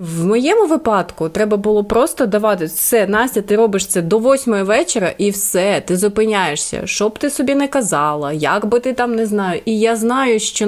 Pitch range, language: 170-220 Hz, Ukrainian